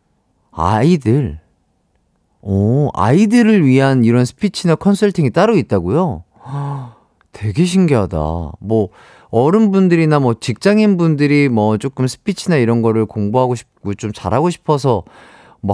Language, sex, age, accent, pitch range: Korean, male, 40-59, native, 110-170 Hz